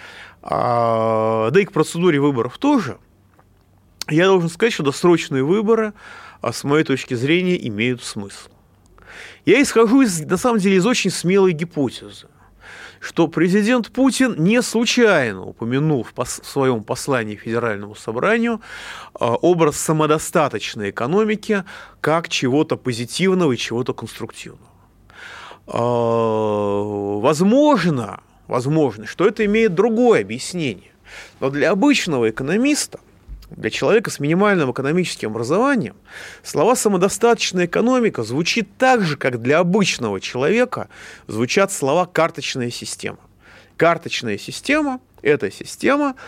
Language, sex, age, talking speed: Russian, male, 30-49, 105 wpm